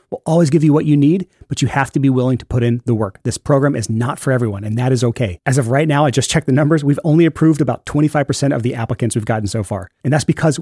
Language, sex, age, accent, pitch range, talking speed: English, male, 30-49, American, 120-155 Hz, 295 wpm